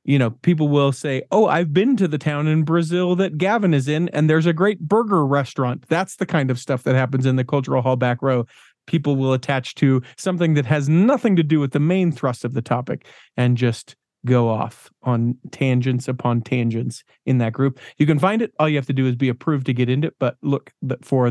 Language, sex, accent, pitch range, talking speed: English, male, American, 125-150 Hz, 235 wpm